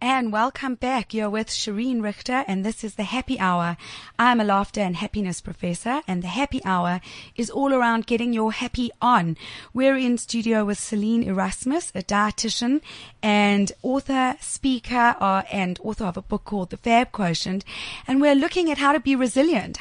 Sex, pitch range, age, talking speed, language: female, 200-260 Hz, 30-49, 180 wpm, English